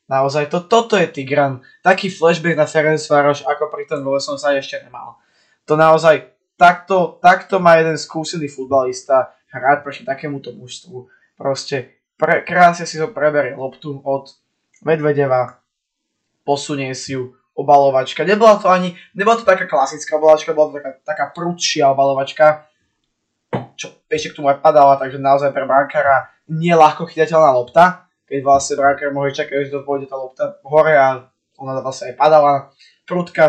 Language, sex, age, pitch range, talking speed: Slovak, male, 20-39, 135-165 Hz, 150 wpm